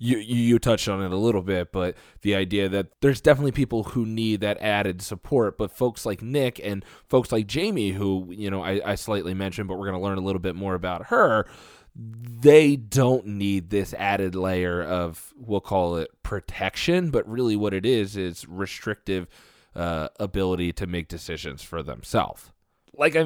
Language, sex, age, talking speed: English, male, 20-39, 190 wpm